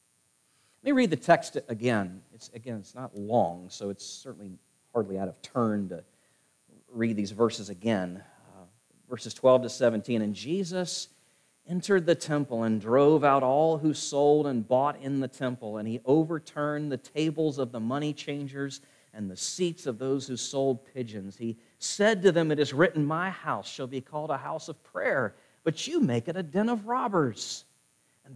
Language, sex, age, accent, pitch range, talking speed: English, male, 40-59, American, 125-180 Hz, 180 wpm